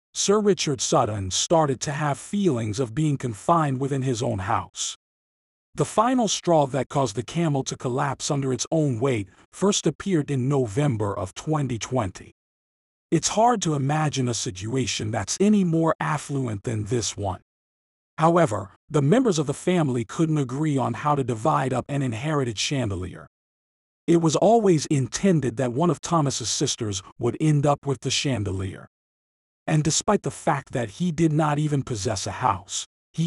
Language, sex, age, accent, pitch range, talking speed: English, male, 50-69, American, 120-155 Hz, 160 wpm